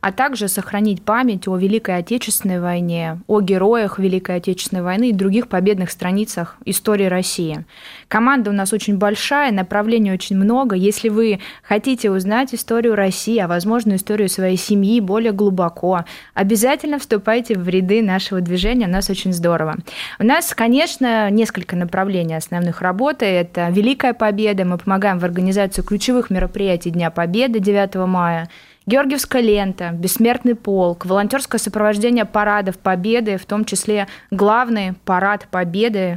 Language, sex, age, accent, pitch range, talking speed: Russian, female, 20-39, native, 190-225 Hz, 140 wpm